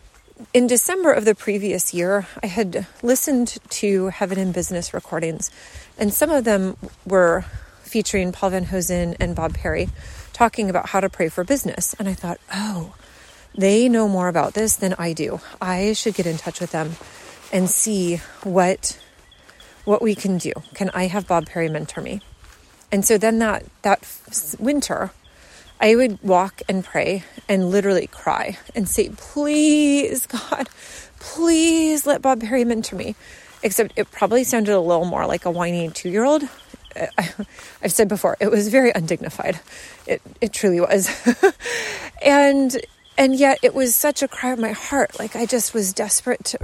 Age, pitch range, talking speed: 30-49, 185-245 Hz, 165 wpm